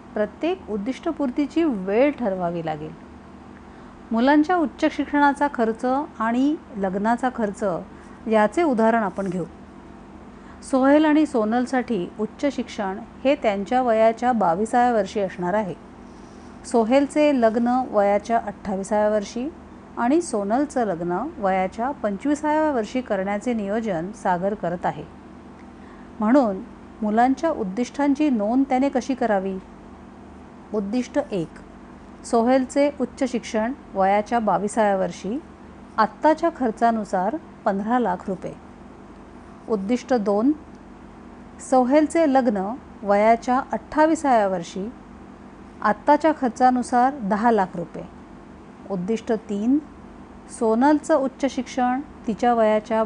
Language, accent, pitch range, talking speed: Marathi, native, 205-265 Hz, 95 wpm